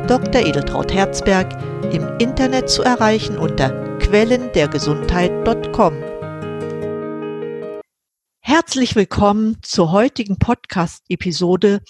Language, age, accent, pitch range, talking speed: German, 50-69, German, 170-220 Hz, 70 wpm